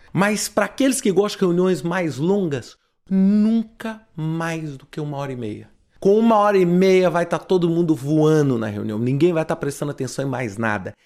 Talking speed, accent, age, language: 200 wpm, Brazilian, 30-49, Portuguese